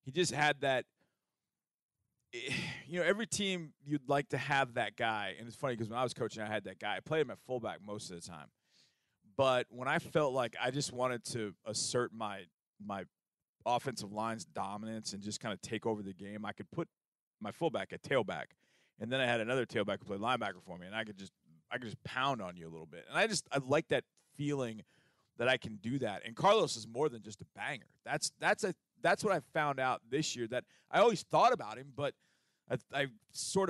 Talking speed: 230 wpm